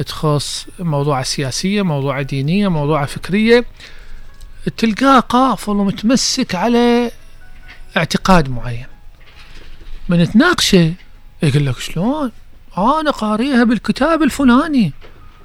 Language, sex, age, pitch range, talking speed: Arabic, male, 50-69, 155-215 Hz, 80 wpm